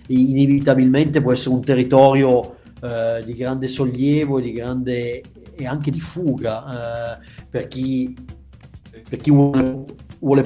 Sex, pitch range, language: male, 125-145 Hz, Italian